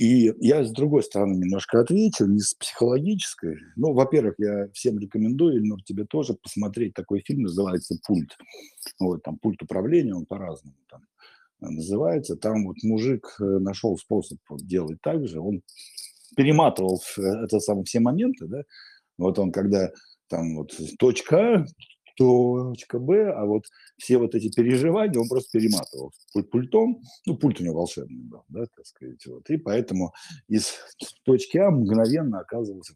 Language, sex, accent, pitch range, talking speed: Russian, male, native, 90-125 Hz, 145 wpm